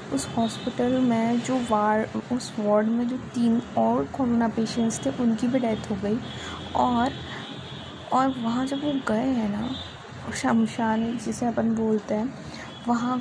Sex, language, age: female, Hindi, 20-39